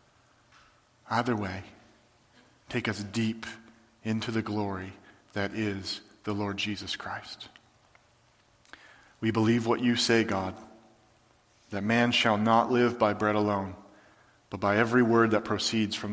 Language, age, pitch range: English, 40-59, 110-130 Hz